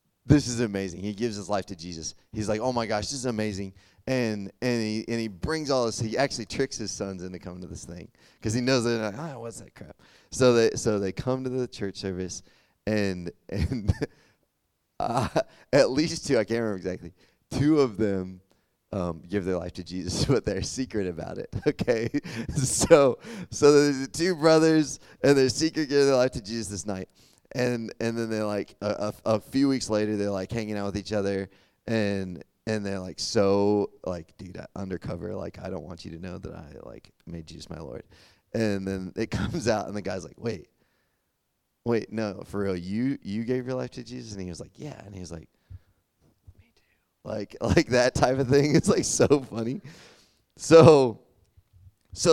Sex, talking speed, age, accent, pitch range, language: male, 205 wpm, 30-49, American, 95-125 Hz, English